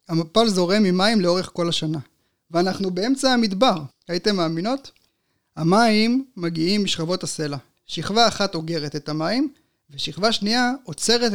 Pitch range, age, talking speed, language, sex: 165-215 Hz, 30-49, 120 wpm, Hebrew, male